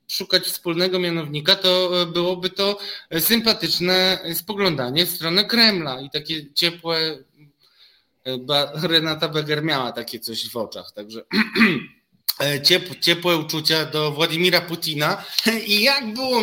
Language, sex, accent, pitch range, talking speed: Polish, male, native, 155-200 Hz, 115 wpm